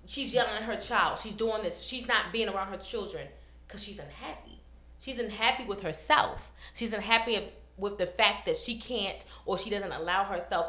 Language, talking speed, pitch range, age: English, 190 wpm, 165-225 Hz, 20-39